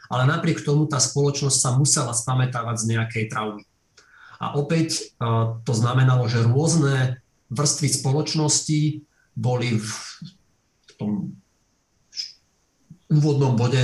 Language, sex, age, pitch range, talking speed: Slovak, male, 40-59, 120-140 Hz, 105 wpm